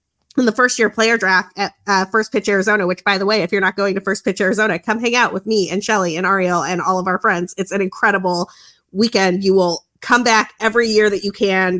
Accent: American